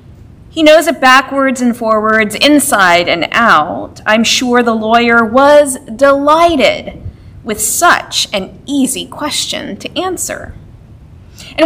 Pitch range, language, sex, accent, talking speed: 225-305 Hz, English, female, American, 120 wpm